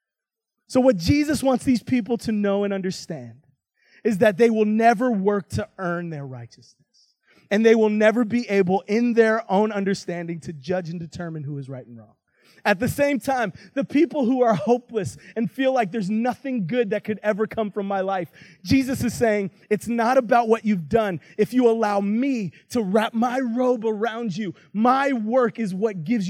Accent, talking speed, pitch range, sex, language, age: American, 195 wpm, 185-235 Hz, male, English, 30-49